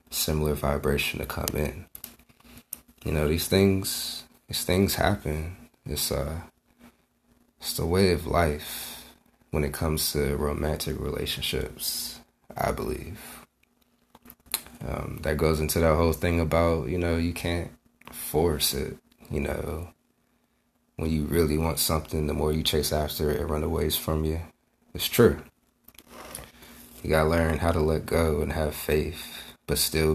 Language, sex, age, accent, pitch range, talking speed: English, male, 30-49, American, 75-85 Hz, 145 wpm